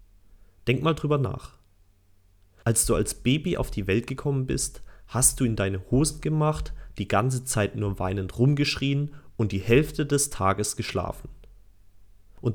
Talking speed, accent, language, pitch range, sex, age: 155 wpm, German, German, 95-130 Hz, male, 30-49